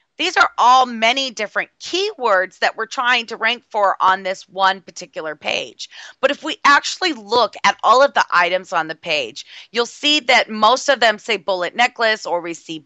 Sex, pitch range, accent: female, 190-265 Hz, American